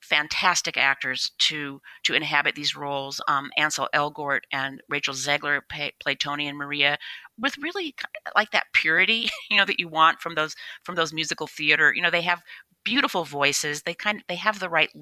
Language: English